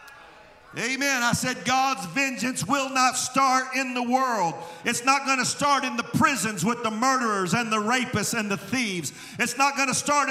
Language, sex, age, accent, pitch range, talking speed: English, male, 50-69, American, 235-275 Hz, 190 wpm